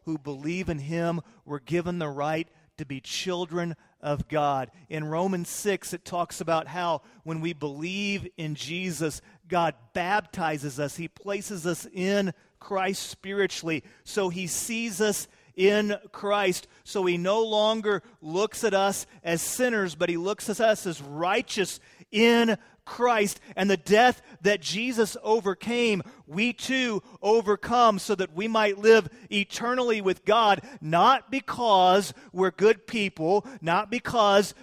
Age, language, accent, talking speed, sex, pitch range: 40-59, English, American, 145 wpm, male, 175-215 Hz